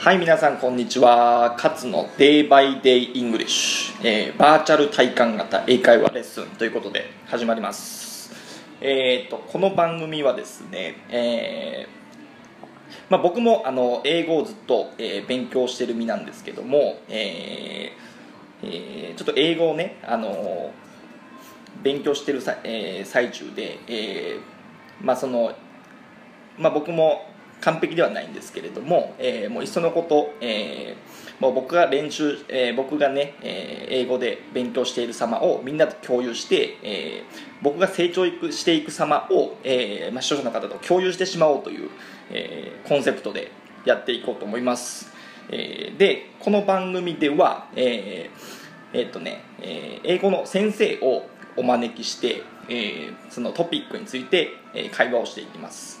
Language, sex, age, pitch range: English, male, 20-39, 125-185 Hz